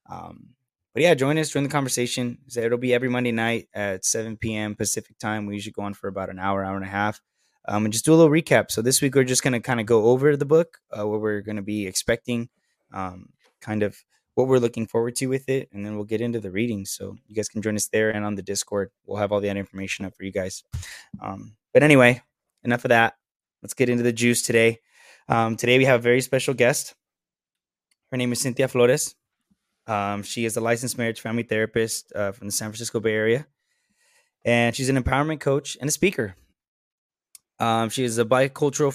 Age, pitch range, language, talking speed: 20-39, 105-125 Hz, English, 225 wpm